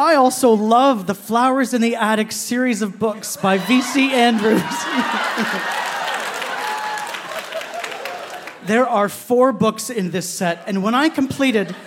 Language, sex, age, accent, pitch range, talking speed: English, male, 30-49, American, 175-230 Hz, 125 wpm